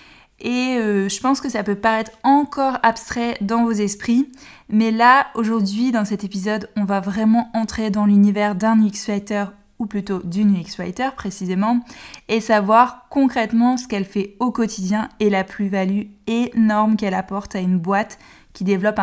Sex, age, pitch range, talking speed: female, 20-39, 200-240 Hz, 165 wpm